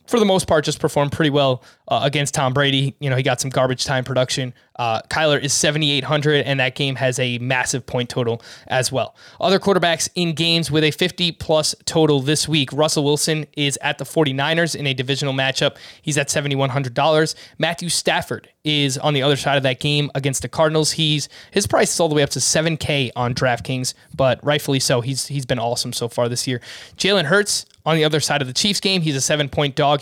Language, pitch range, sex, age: English, 135-160 Hz, male, 20-39